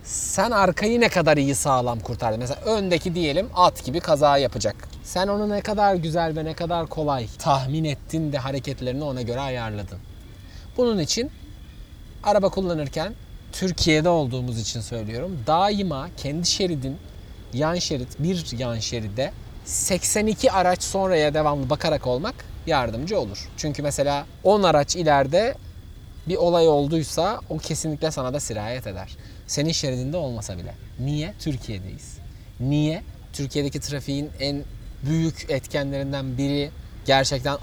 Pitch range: 120-165 Hz